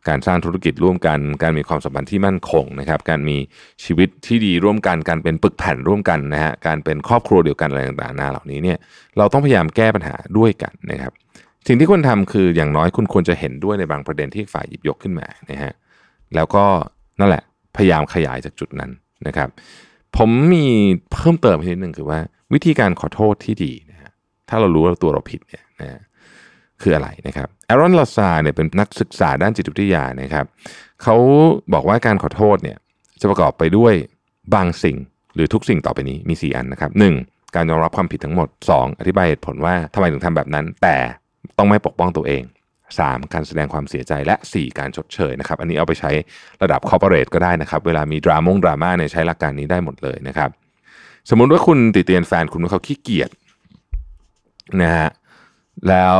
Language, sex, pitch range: Thai, male, 75-105 Hz